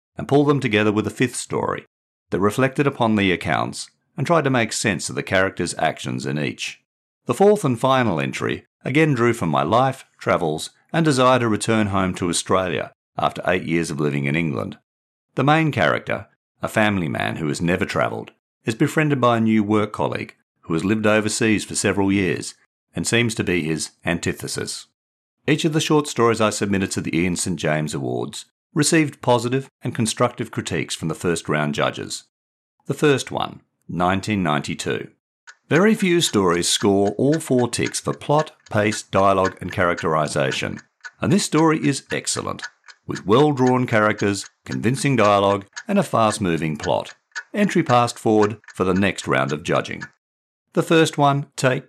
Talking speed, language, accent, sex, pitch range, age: 170 wpm, English, Australian, male, 90-130 Hz, 50-69